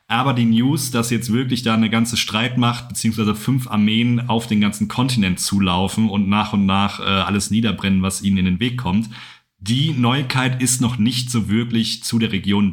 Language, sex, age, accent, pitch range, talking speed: German, male, 40-59, German, 105-125 Hz, 195 wpm